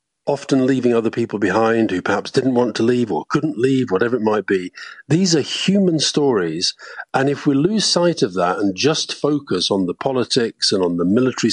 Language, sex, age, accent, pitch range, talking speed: English, male, 50-69, British, 100-145 Hz, 205 wpm